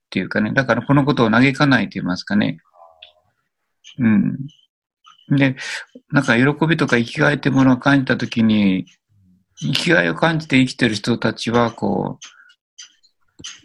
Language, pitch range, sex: Japanese, 120-150 Hz, male